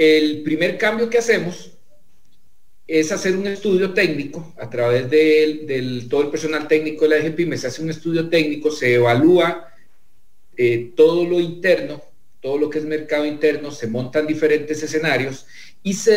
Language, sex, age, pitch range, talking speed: English, male, 40-59, 145-180 Hz, 165 wpm